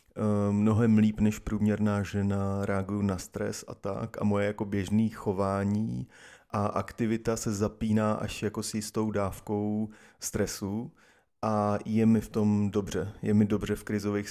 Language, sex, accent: Czech, male, native